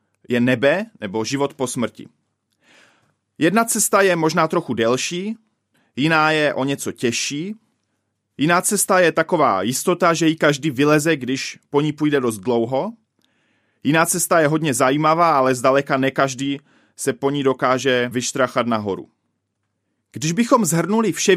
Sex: male